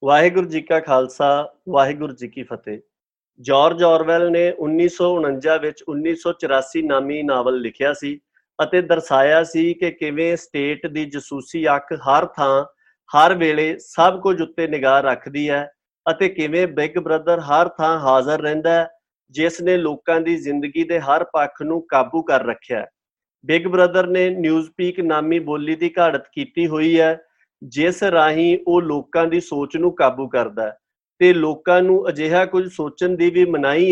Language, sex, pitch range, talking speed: Punjabi, male, 145-175 Hz, 150 wpm